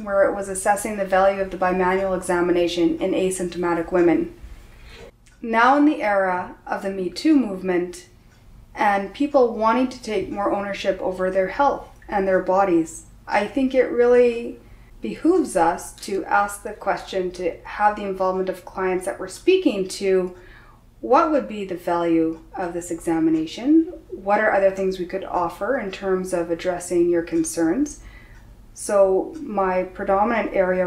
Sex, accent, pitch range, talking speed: female, American, 175-215 Hz, 155 wpm